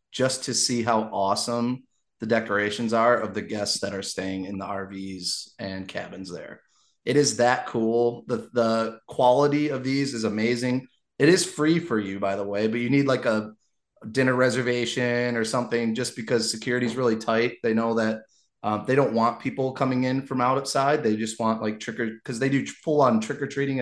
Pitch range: 110-140 Hz